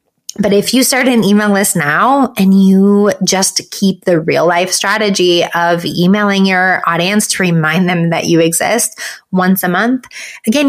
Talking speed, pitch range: 170 wpm, 175-220 Hz